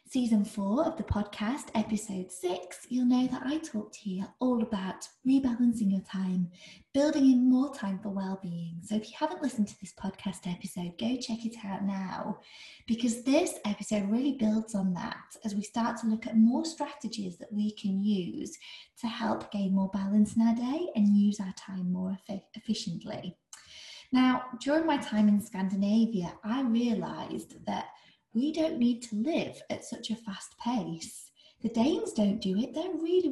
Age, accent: 20-39, British